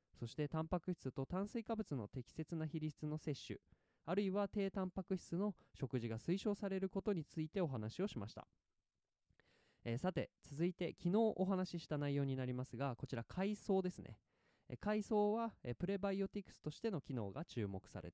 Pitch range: 120-185 Hz